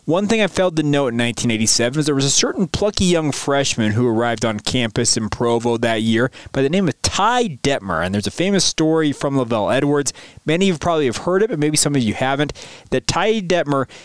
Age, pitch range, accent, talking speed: 20-39, 120-160 Hz, American, 230 wpm